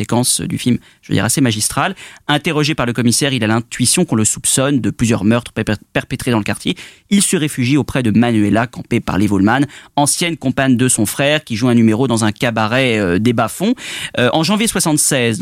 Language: French